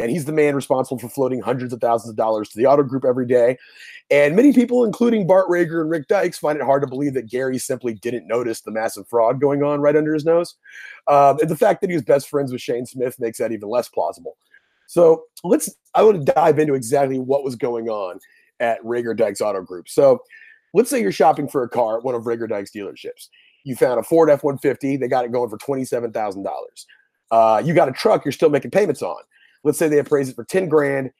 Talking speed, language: 235 wpm, English